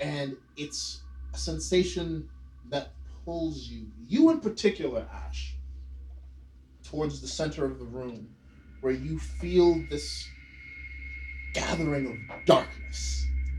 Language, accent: English, American